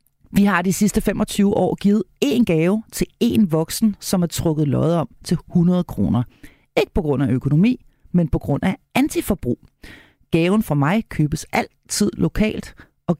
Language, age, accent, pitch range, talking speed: Danish, 40-59, native, 155-215 Hz, 170 wpm